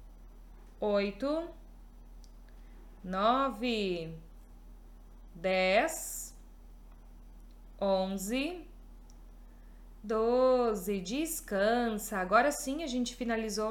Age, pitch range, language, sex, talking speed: 20-39, 210-285 Hz, Portuguese, female, 50 wpm